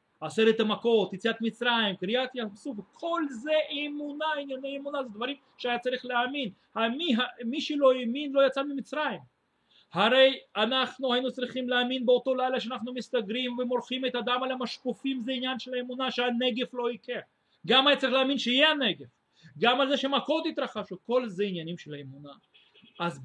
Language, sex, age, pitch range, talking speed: Russian, male, 30-49, 185-255 Hz, 150 wpm